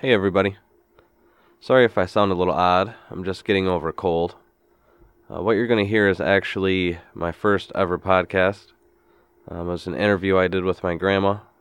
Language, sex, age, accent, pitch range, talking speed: English, male, 20-39, American, 85-95 Hz, 185 wpm